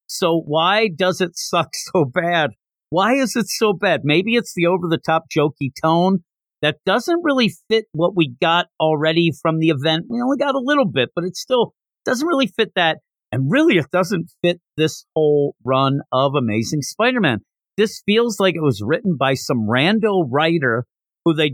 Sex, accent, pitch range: male, American, 145-200 Hz